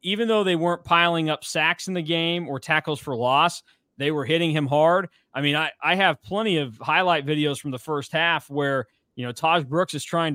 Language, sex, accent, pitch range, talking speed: English, male, American, 135-170 Hz, 225 wpm